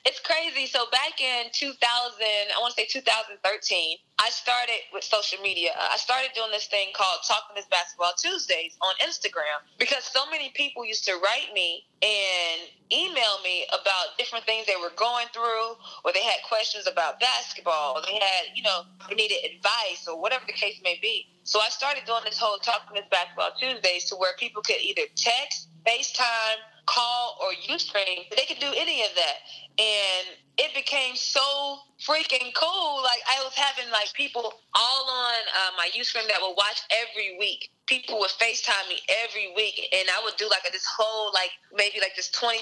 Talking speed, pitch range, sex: 185 wpm, 190-260 Hz, female